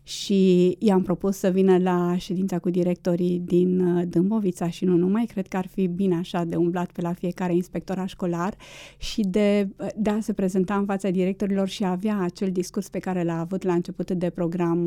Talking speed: 200 wpm